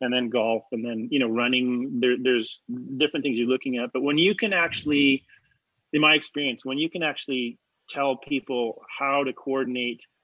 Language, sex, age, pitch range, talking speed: English, male, 30-49, 120-140 Hz, 180 wpm